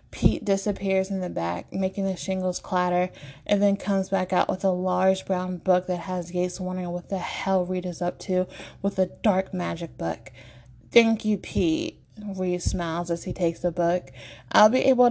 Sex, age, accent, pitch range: female, 20-39, American, 180-210 Hz